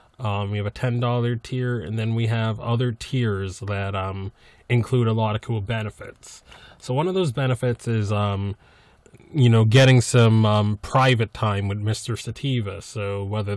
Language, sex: English, male